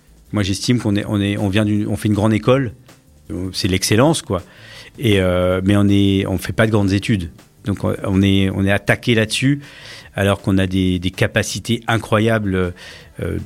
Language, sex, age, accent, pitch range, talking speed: French, male, 50-69, French, 95-120 Hz, 190 wpm